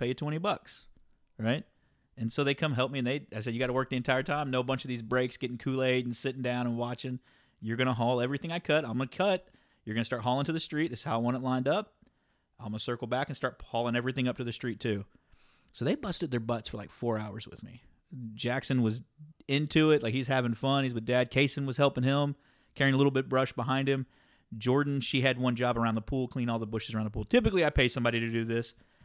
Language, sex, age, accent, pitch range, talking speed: English, male, 30-49, American, 115-135 Hz, 265 wpm